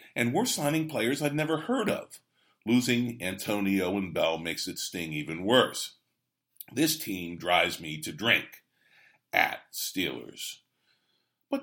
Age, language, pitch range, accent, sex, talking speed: 50-69, English, 85-125 Hz, American, male, 135 wpm